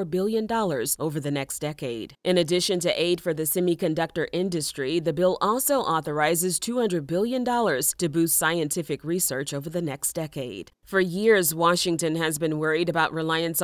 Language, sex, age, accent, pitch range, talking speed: English, female, 30-49, American, 155-185 Hz, 160 wpm